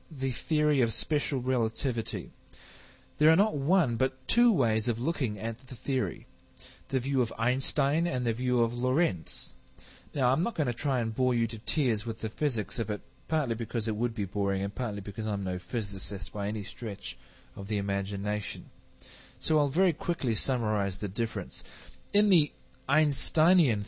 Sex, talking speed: male, 175 wpm